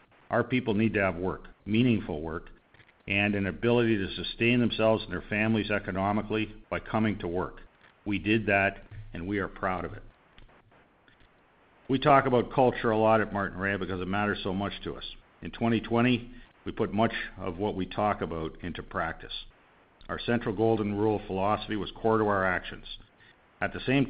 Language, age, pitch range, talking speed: English, 50-69, 95-115 Hz, 180 wpm